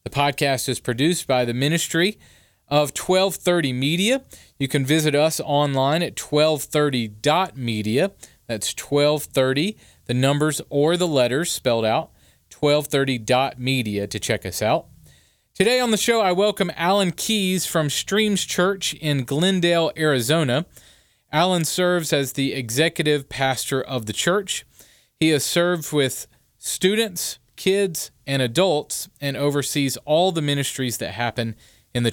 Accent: American